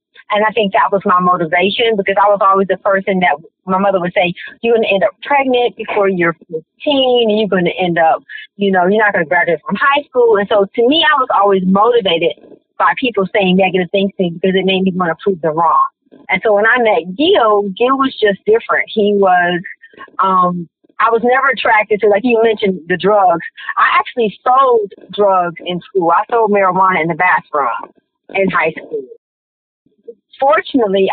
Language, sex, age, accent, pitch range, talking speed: English, female, 40-59, American, 185-225 Hz, 200 wpm